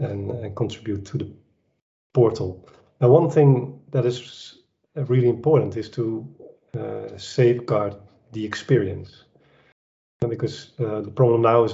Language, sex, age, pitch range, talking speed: English, male, 40-59, 105-130 Hz, 135 wpm